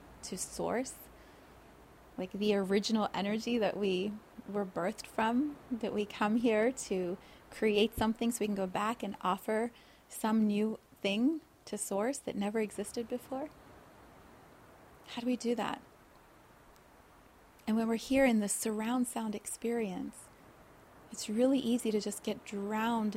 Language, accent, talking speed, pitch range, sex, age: English, American, 140 wpm, 205-240 Hz, female, 30-49